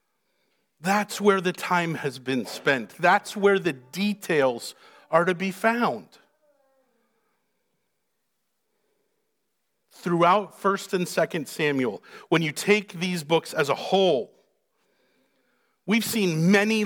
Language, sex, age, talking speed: English, male, 50-69, 110 wpm